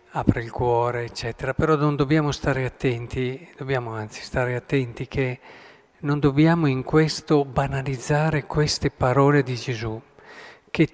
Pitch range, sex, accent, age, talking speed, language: 125-155 Hz, male, native, 50-69, 130 wpm, Italian